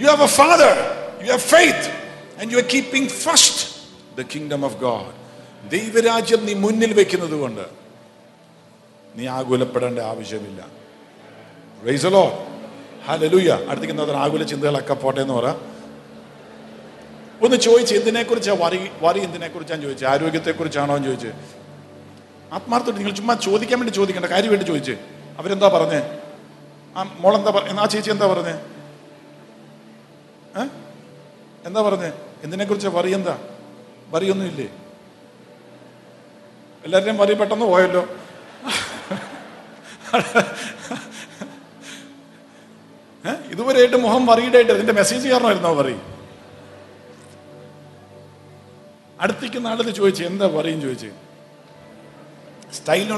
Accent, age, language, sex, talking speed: Indian, 50-69, English, male, 55 wpm